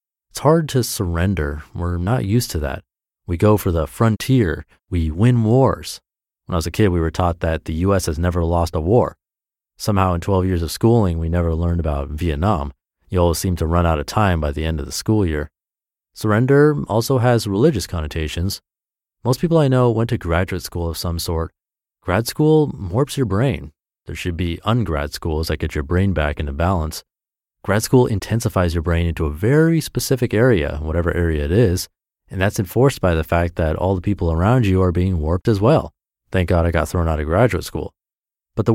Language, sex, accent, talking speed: English, male, American, 205 wpm